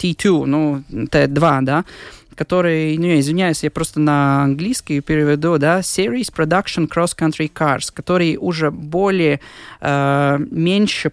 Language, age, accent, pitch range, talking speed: Russian, 20-39, native, 145-180 Hz, 125 wpm